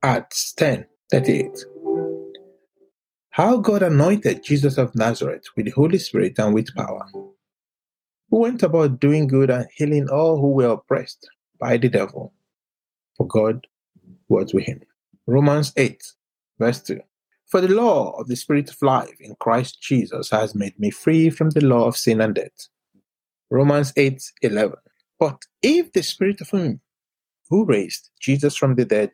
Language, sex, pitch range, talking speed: English, male, 125-185 Hz, 150 wpm